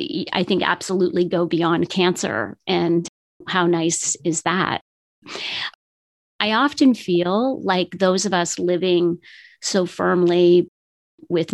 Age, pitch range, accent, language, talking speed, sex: 40-59, 170-200 Hz, American, English, 115 wpm, female